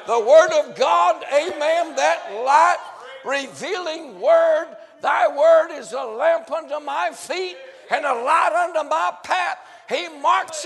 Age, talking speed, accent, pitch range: 60-79, 140 wpm, American, 205-330 Hz